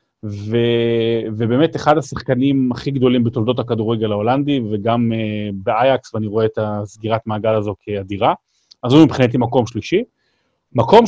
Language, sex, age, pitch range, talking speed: Hebrew, male, 30-49, 110-140 Hz, 135 wpm